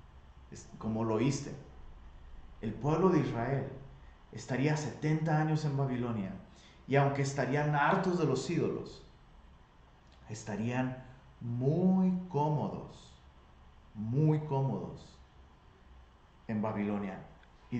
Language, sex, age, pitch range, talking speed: Spanish, male, 30-49, 110-150 Hz, 90 wpm